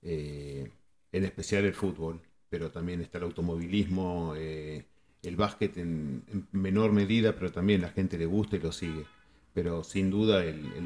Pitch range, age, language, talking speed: 85-100 Hz, 40-59, Hebrew, 170 wpm